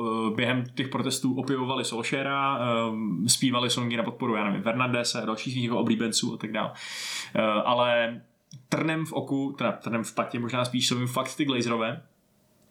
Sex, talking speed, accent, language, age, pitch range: male, 145 wpm, native, Czech, 20-39, 120-140 Hz